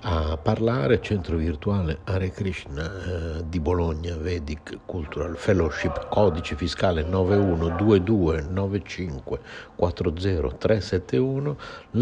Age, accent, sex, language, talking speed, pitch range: 60-79, native, male, Italian, 75 wpm, 85-95 Hz